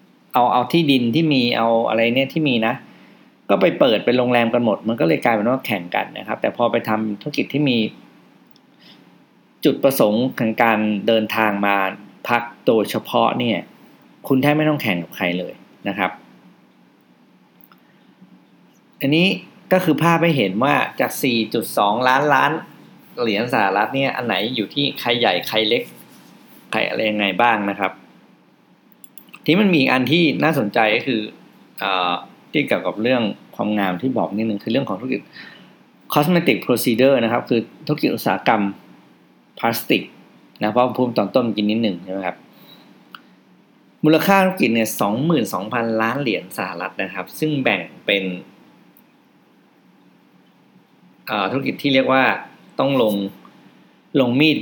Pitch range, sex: 105-140 Hz, male